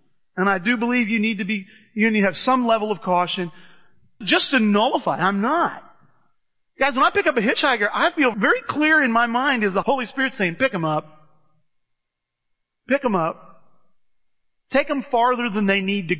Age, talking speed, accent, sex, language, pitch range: 40-59, 195 wpm, American, male, English, 180-255 Hz